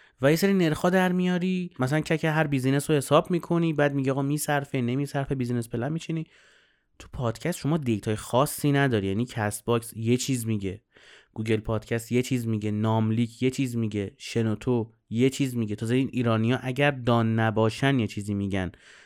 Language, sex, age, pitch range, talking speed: Persian, male, 30-49, 115-150 Hz, 165 wpm